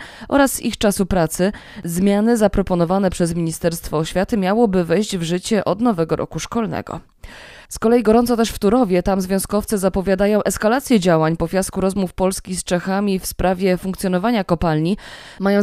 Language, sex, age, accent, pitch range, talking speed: Polish, female, 20-39, native, 180-225 Hz, 150 wpm